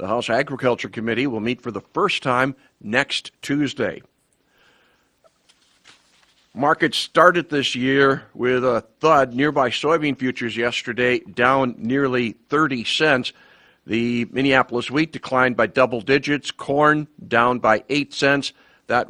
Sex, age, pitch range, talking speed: male, 50-69, 115-140 Hz, 125 wpm